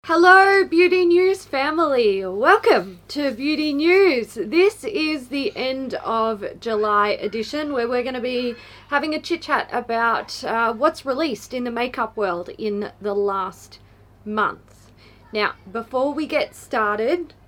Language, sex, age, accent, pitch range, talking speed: English, female, 20-39, Australian, 210-285 Hz, 135 wpm